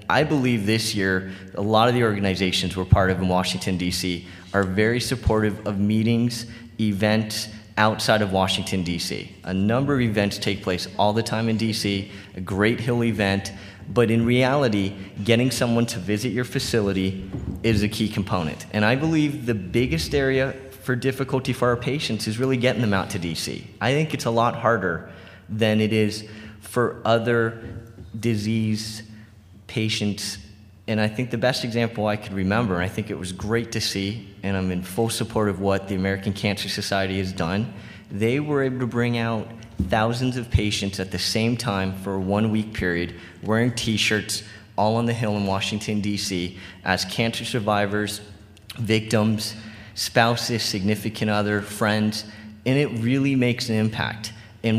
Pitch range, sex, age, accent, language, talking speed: 100-115 Hz, male, 30-49, American, English, 170 wpm